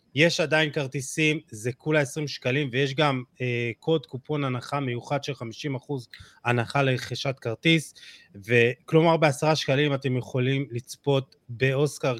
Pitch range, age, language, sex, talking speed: 125-150 Hz, 30-49, Hebrew, male, 130 wpm